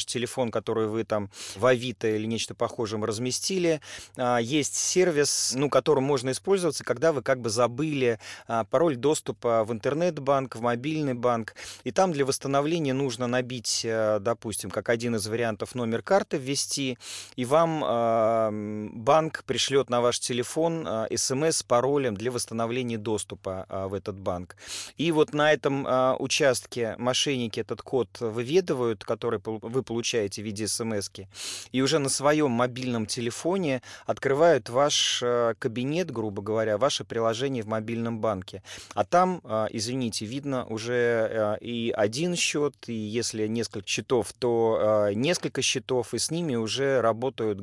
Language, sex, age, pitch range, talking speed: Russian, male, 30-49, 110-135 Hz, 135 wpm